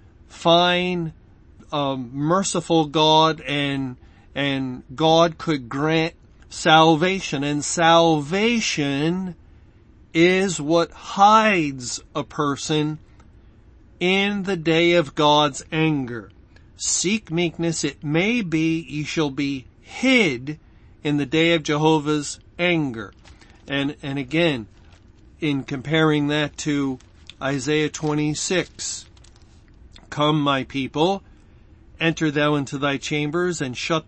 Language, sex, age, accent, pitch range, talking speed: English, male, 40-59, American, 130-165 Hz, 100 wpm